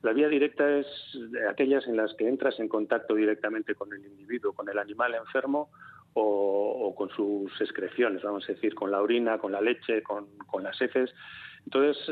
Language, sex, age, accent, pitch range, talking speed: Spanish, male, 40-59, Spanish, 110-130 Hz, 190 wpm